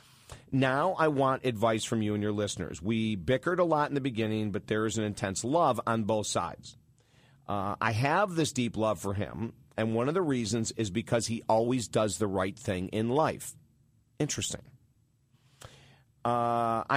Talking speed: 175 wpm